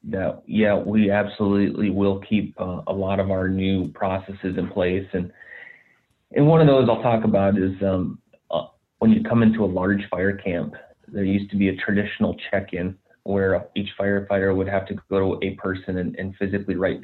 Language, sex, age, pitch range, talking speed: English, male, 30-49, 95-105 Hz, 195 wpm